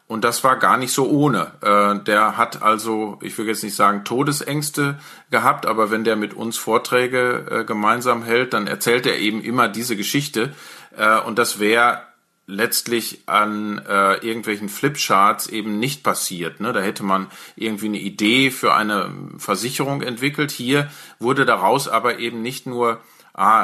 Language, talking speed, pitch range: German, 150 wpm, 105-130 Hz